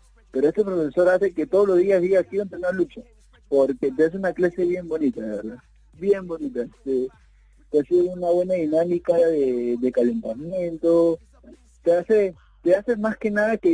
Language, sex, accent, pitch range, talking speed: Spanish, male, Argentinian, 120-180 Hz, 175 wpm